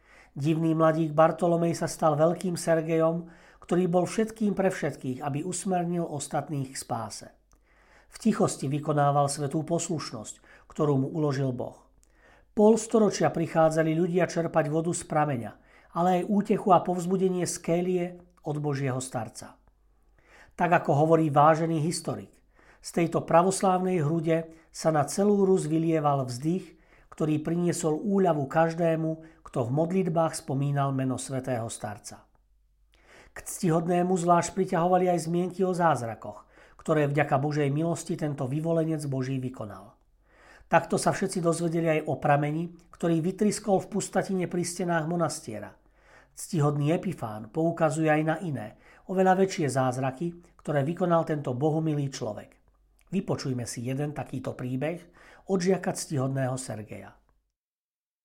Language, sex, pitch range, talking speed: Slovak, male, 145-175 Hz, 125 wpm